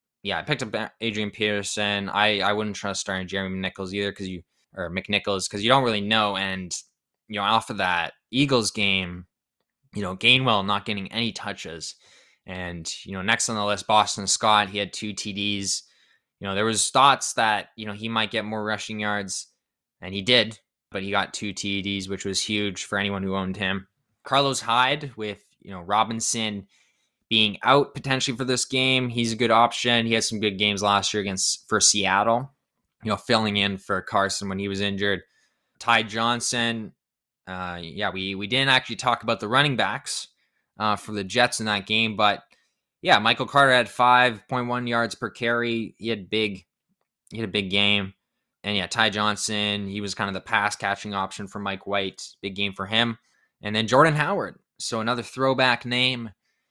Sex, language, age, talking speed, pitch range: male, English, 10-29, 195 wpm, 100-115 Hz